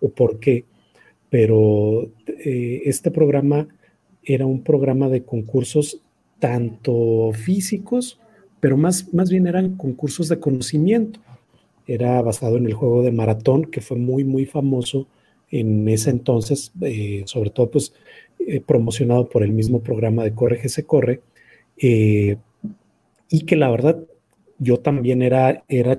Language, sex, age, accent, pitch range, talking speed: Spanish, male, 40-59, Mexican, 120-160 Hz, 140 wpm